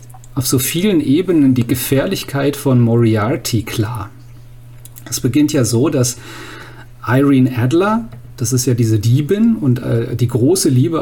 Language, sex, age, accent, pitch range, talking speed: German, male, 40-59, German, 120-140 Hz, 140 wpm